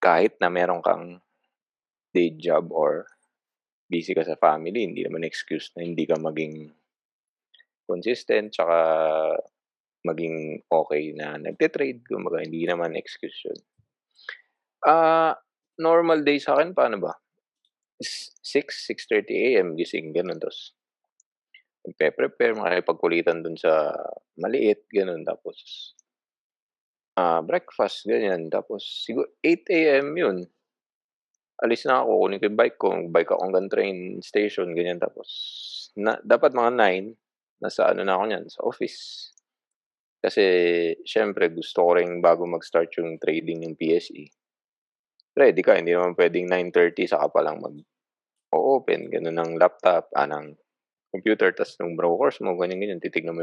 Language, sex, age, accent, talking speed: Filipino, male, 20-39, native, 130 wpm